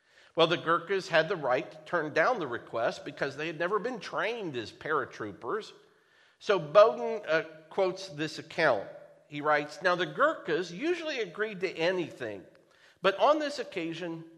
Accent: American